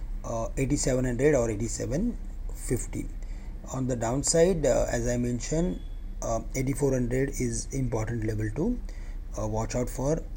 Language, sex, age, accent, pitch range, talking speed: English, male, 30-49, Indian, 115-135 Hz, 115 wpm